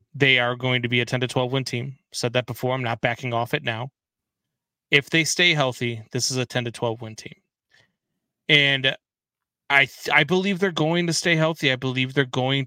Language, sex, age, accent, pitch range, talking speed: English, male, 20-39, American, 120-145 Hz, 220 wpm